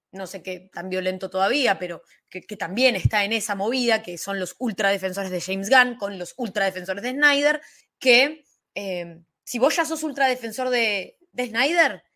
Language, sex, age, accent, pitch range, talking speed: Spanish, female, 20-39, Argentinian, 200-270 Hz, 180 wpm